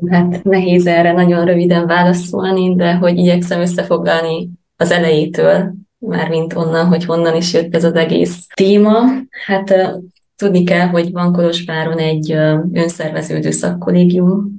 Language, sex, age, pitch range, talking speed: Hungarian, female, 20-39, 165-185 Hz, 130 wpm